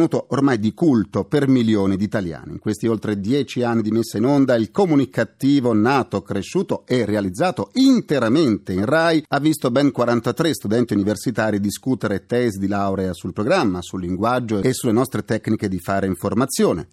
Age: 40-59